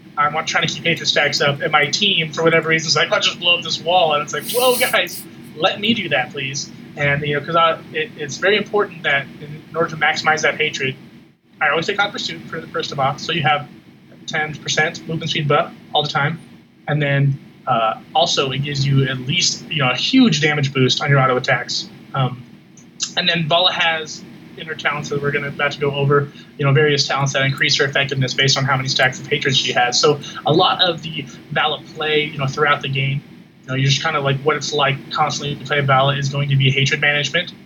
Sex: male